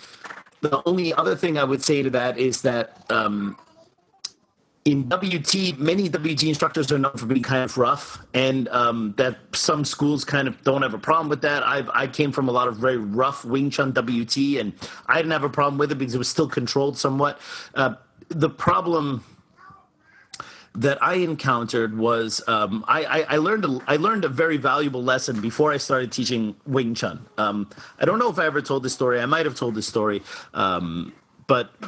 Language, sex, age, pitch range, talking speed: English, male, 30-49, 125-155 Hz, 195 wpm